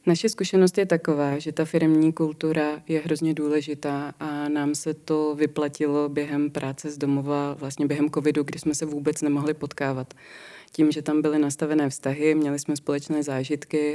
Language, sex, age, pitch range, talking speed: Czech, female, 20-39, 140-150 Hz, 170 wpm